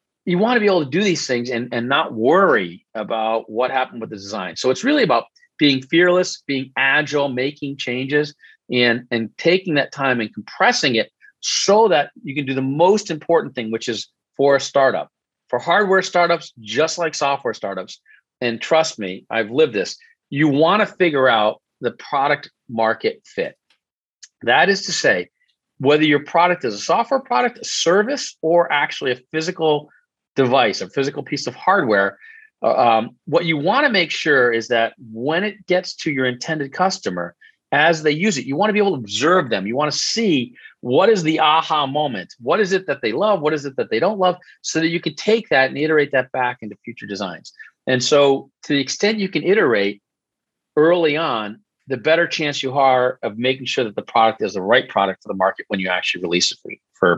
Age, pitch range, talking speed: 40-59, 130-180 Hz, 205 wpm